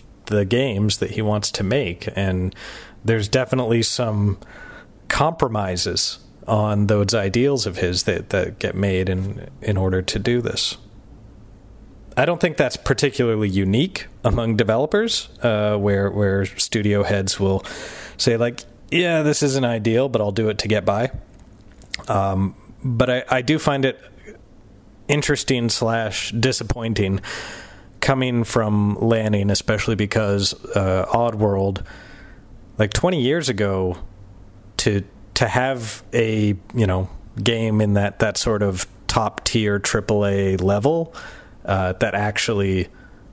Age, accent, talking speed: 30-49, American, 135 wpm